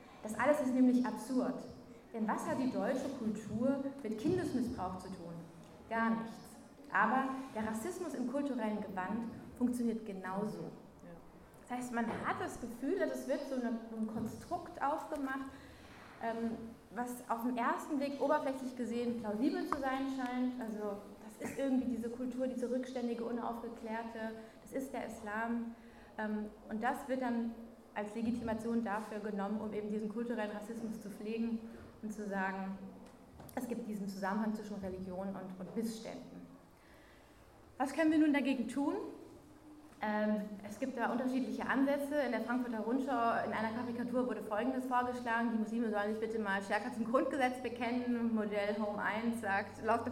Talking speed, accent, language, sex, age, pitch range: 150 wpm, German, German, female, 20-39, 215-255 Hz